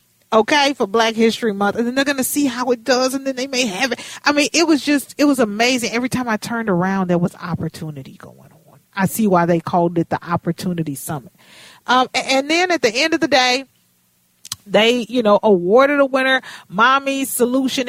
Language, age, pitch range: English, 40-59, 185-250 Hz